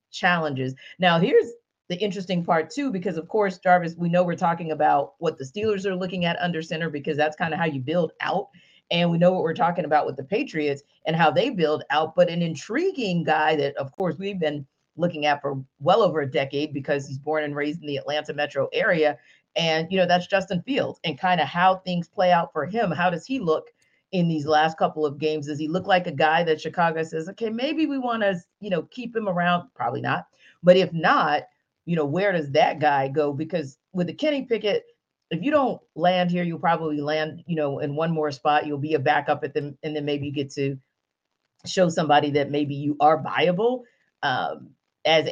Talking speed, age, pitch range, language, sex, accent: 225 wpm, 40-59, 150-185 Hz, English, female, American